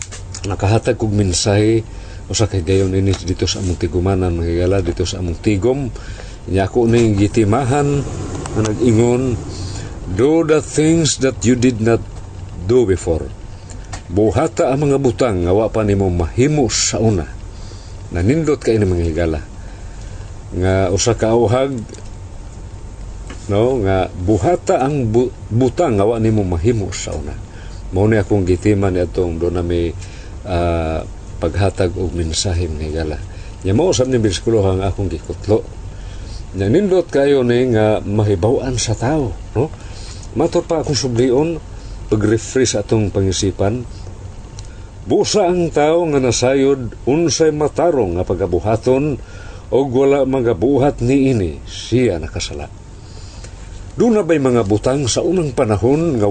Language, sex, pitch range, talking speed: Filipino, male, 95-125 Hz, 115 wpm